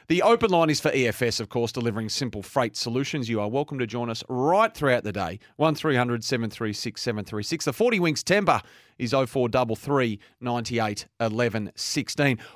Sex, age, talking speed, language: male, 30-49, 155 wpm, English